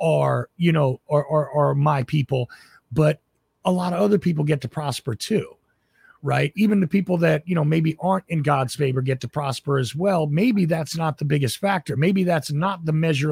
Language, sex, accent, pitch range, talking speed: English, male, American, 145-175 Hz, 205 wpm